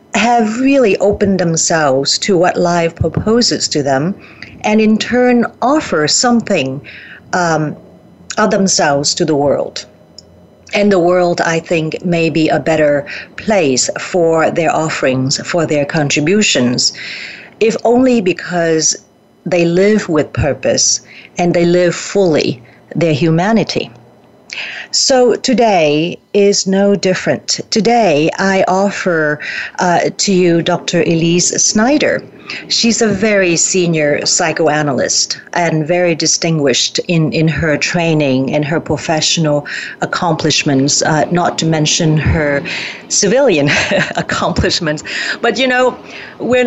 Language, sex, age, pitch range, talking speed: English, female, 50-69, 155-195 Hz, 115 wpm